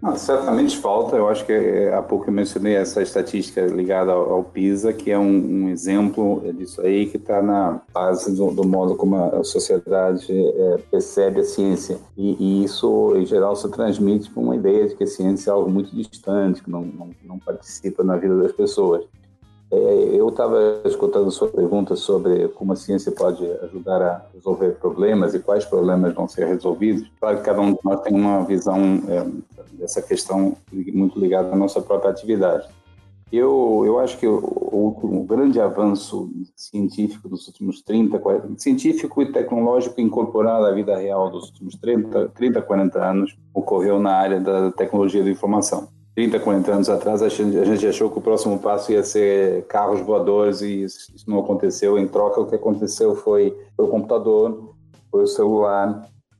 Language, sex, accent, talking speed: Portuguese, male, Brazilian, 180 wpm